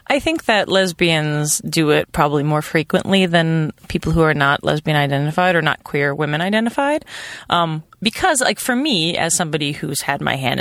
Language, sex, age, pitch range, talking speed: English, female, 30-49, 155-215 Hz, 165 wpm